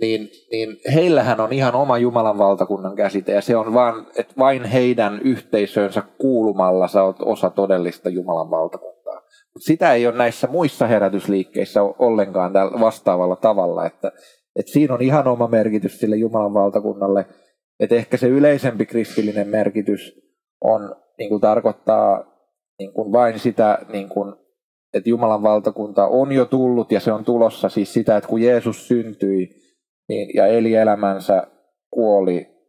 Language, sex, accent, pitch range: Finnish, male, native, 100-120 Hz